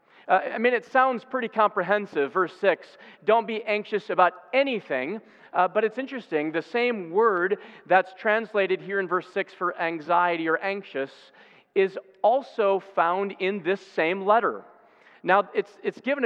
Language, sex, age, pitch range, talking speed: English, male, 40-59, 175-220 Hz, 155 wpm